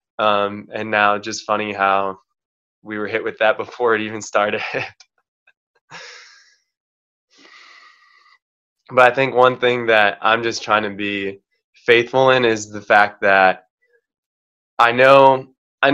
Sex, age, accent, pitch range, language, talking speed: male, 20-39, American, 105-125 Hz, English, 130 wpm